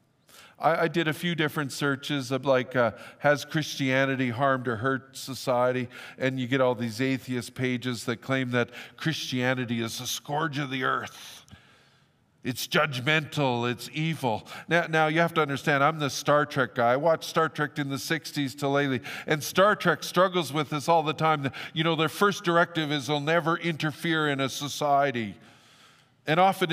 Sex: male